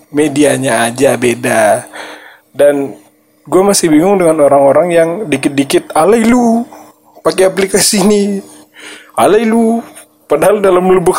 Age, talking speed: 20-39, 100 wpm